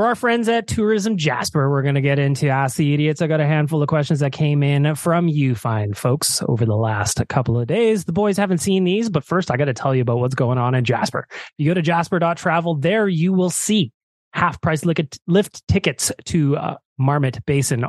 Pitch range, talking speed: 135-195 Hz, 220 wpm